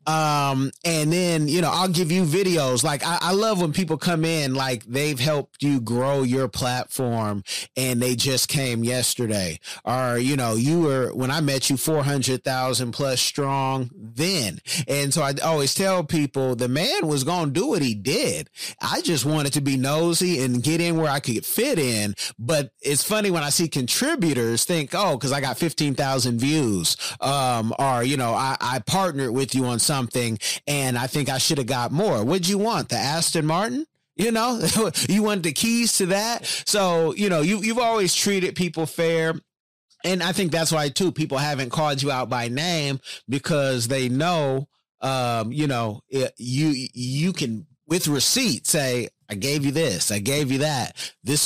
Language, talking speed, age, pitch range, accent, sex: English, 190 wpm, 30-49, 130-165 Hz, American, male